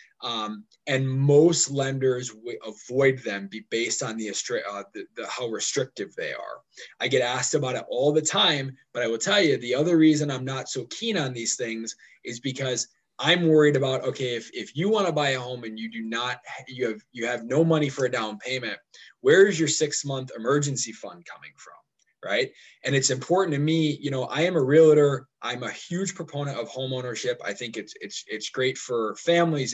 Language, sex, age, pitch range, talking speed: English, male, 20-39, 120-155 Hz, 210 wpm